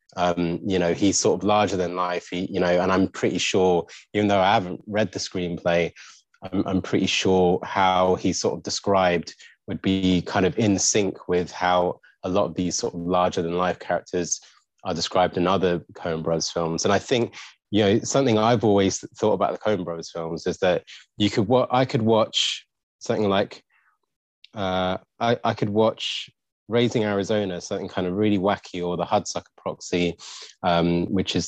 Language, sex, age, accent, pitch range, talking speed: English, male, 20-39, British, 90-100 Hz, 190 wpm